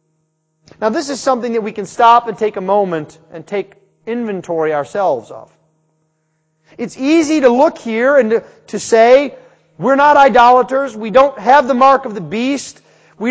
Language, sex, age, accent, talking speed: English, male, 40-59, American, 170 wpm